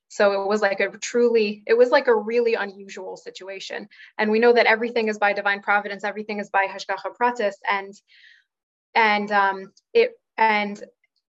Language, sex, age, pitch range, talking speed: English, female, 20-39, 195-220 Hz, 155 wpm